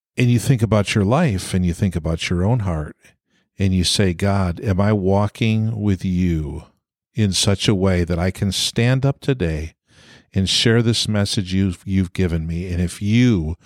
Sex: male